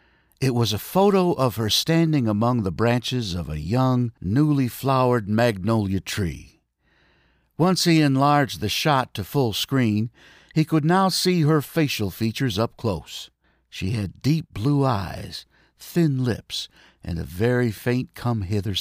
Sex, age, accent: male, 60-79, American